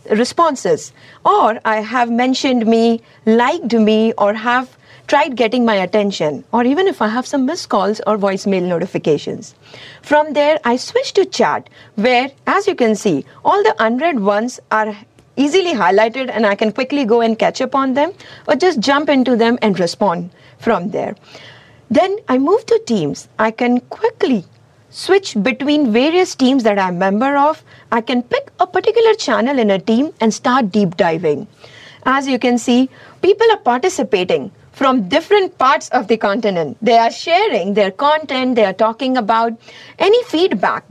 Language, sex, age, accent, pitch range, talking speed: English, female, 50-69, Indian, 215-290 Hz, 170 wpm